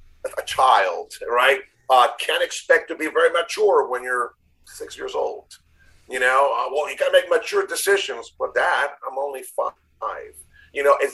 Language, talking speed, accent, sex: English, 170 wpm, American, male